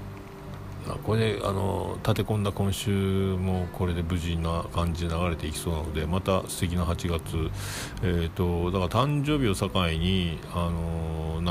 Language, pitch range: Japanese, 80-100 Hz